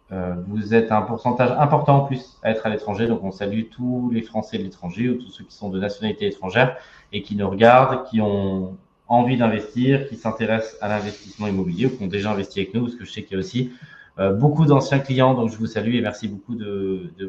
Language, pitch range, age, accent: French, 105-135 Hz, 20-39, French